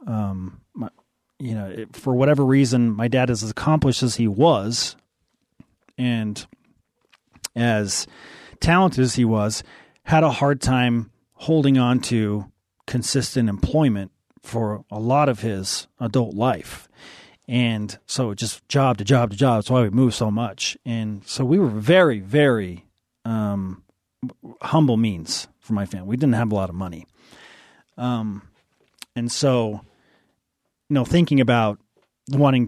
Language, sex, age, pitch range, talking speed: English, male, 40-59, 105-130 Hz, 145 wpm